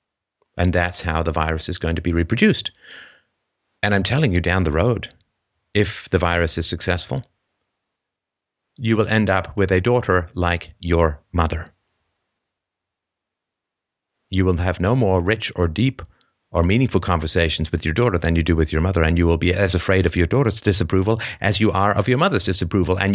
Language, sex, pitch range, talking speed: English, male, 90-130 Hz, 180 wpm